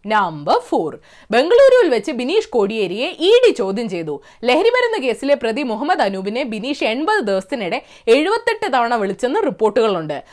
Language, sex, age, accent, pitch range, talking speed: Malayalam, female, 20-39, native, 235-370 Hz, 110 wpm